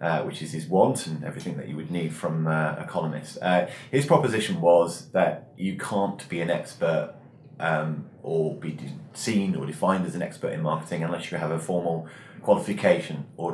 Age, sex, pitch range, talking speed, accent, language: 20-39, male, 85-120 Hz, 195 wpm, British, English